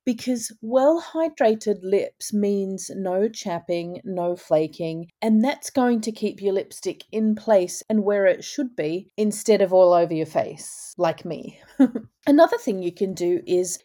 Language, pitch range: English, 190-250 Hz